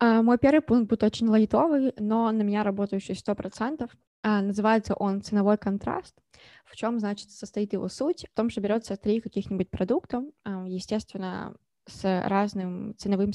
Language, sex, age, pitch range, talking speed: Ukrainian, female, 20-39, 190-215 Hz, 145 wpm